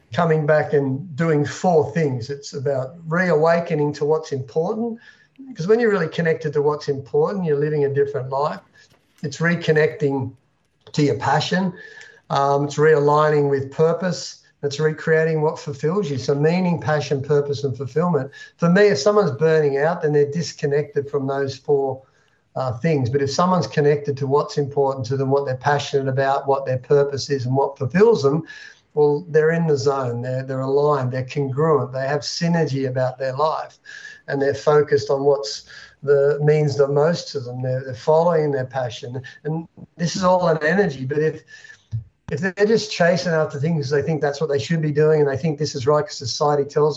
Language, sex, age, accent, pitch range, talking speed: English, male, 50-69, Australian, 140-160 Hz, 185 wpm